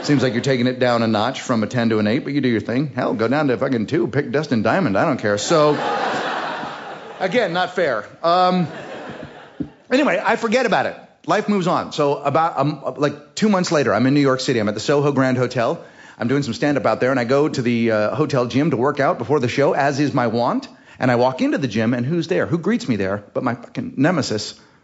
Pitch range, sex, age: 130-175 Hz, male, 30-49